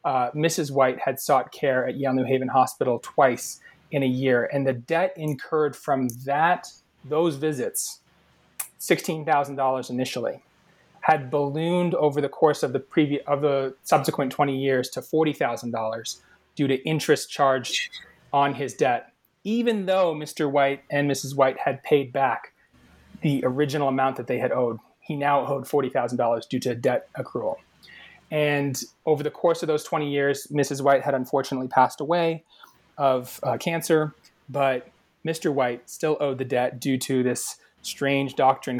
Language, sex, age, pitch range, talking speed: English, male, 30-49, 130-150 Hz, 155 wpm